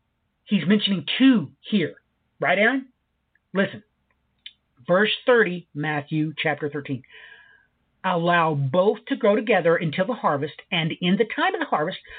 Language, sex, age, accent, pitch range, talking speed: English, male, 50-69, American, 160-235 Hz, 135 wpm